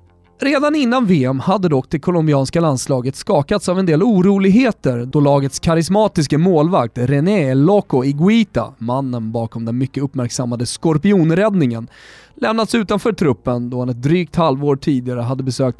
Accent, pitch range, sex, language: native, 125-185 Hz, male, Swedish